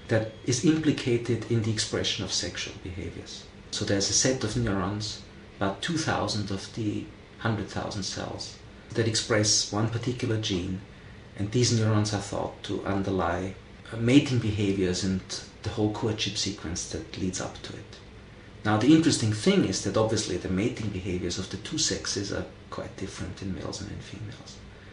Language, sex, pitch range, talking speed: English, male, 100-115 Hz, 160 wpm